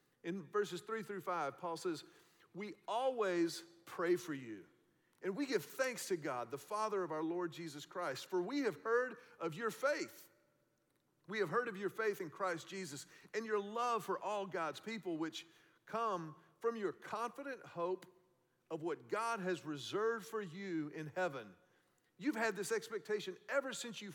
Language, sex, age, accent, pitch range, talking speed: English, male, 40-59, American, 180-240 Hz, 175 wpm